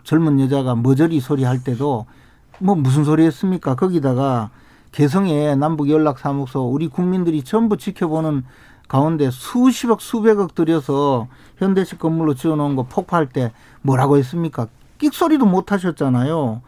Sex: male